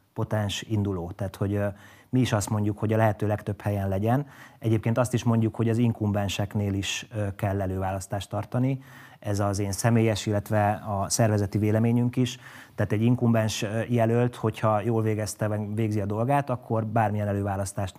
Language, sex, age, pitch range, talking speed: Hungarian, male, 30-49, 100-120 Hz, 155 wpm